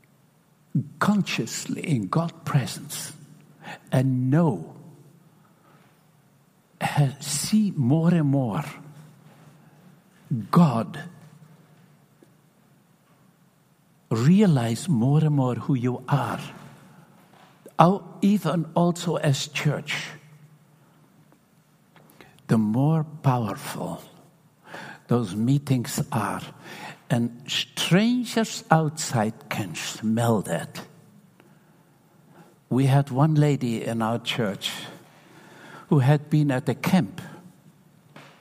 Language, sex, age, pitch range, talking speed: English, male, 60-79, 145-175 Hz, 75 wpm